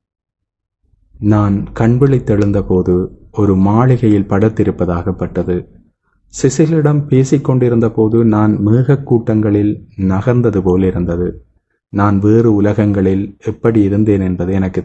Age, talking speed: 30-49, 85 wpm